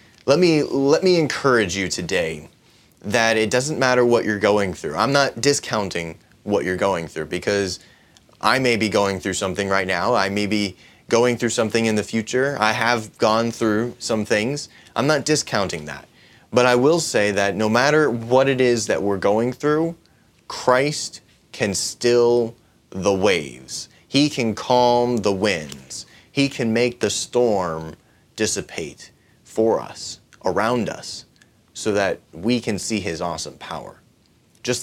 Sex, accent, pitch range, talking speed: male, American, 100-120 Hz, 160 wpm